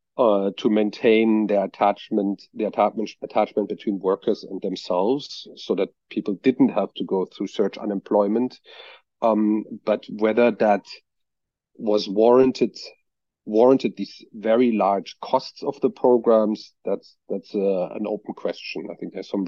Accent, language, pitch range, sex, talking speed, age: German, English, 105-125 Hz, male, 140 wpm, 40-59